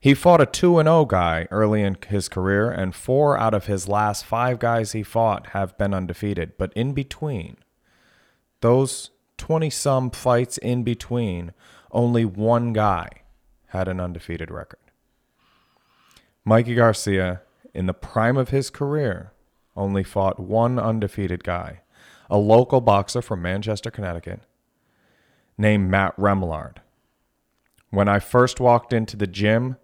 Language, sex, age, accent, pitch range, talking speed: English, male, 30-49, American, 90-110 Hz, 135 wpm